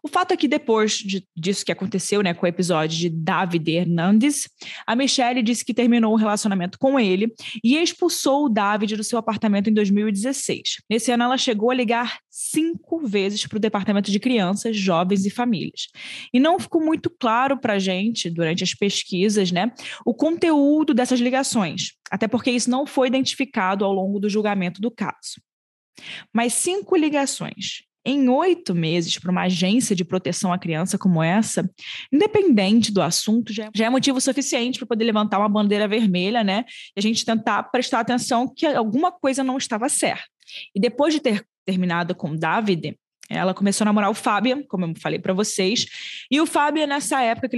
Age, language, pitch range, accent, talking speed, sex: 20-39, Portuguese, 200-260 Hz, Brazilian, 180 wpm, female